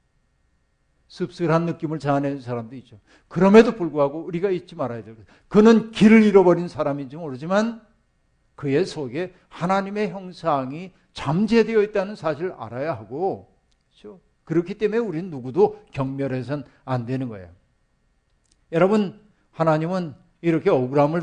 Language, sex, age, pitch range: Korean, male, 60-79, 145-185 Hz